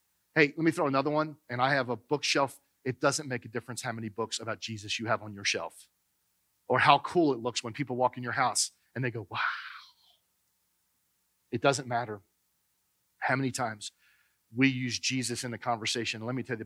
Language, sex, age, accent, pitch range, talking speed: English, male, 40-59, American, 110-140 Hz, 205 wpm